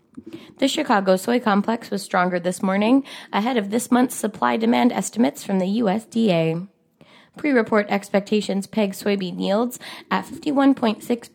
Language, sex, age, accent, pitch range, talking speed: English, female, 20-39, American, 180-235 Hz, 125 wpm